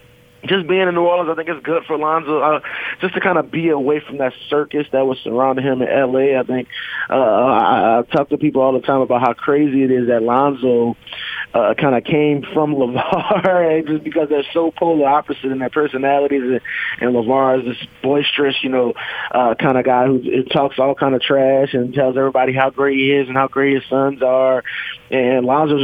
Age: 20-39